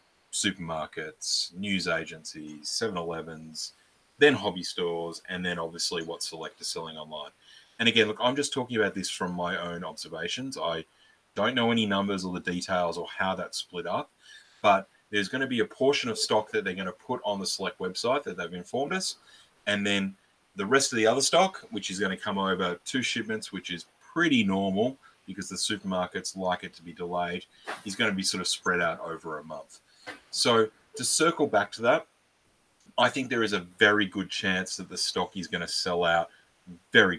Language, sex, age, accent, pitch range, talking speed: English, male, 30-49, Australian, 90-115 Hz, 200 wpm